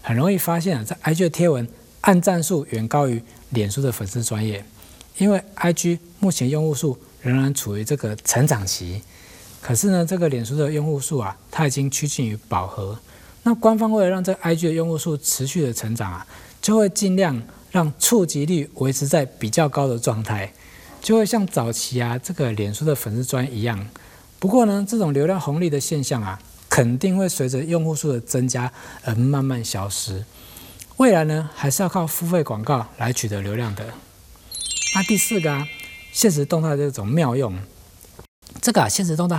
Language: Chinese